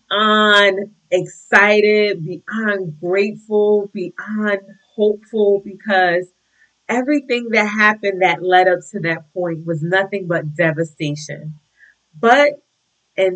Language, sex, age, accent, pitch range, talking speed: English, female, 30-49, American, 165-210 Hz, 100 wpm